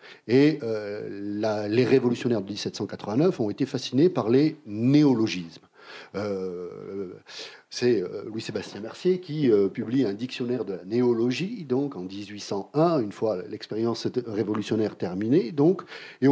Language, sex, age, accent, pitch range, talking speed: French, male, 40-59, French, 110-155 Hz, 120 wpm